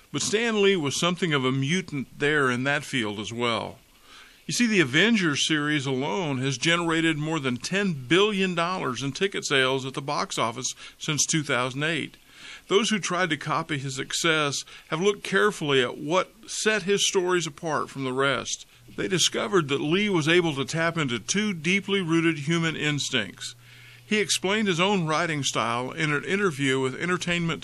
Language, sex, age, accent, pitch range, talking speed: English, male, 50-69, American, 130-185 Hz, 170 wpm